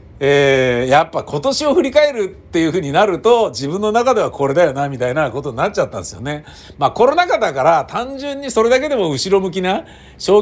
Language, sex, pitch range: Japanese, male, 125-190 Hz